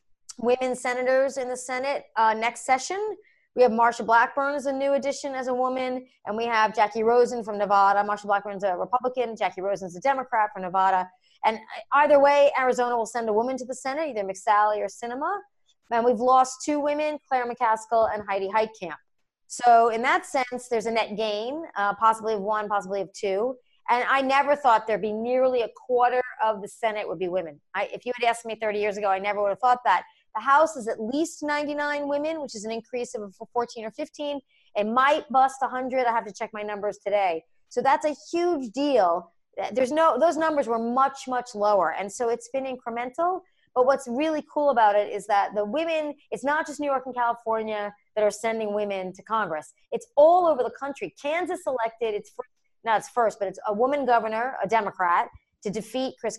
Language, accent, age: English, American, 30-49